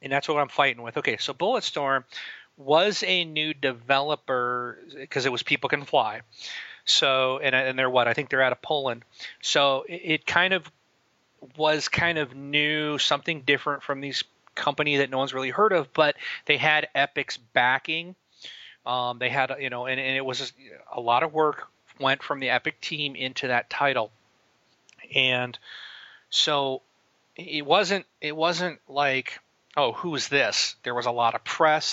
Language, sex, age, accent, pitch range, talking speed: English, male, 40-59, American, 125-150 Hz, 175 wpm